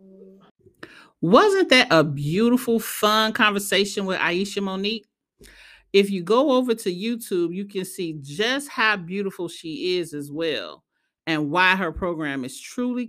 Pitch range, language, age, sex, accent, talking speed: 160-210 Hz, English, 40-59, male, American, 140 wpm